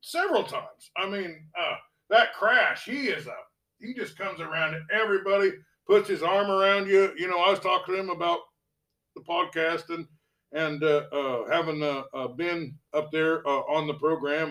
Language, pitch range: English, 155-200 Hz